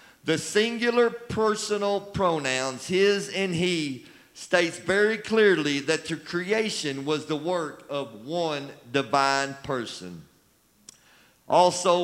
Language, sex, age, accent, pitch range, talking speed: English, male, 50-69, American, 155-205 Hz, 105 wpm